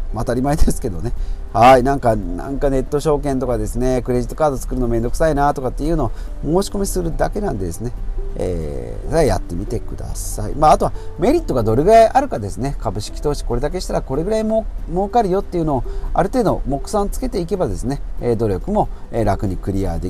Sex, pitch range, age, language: male, 110-170 Hz, 40-59, Japanese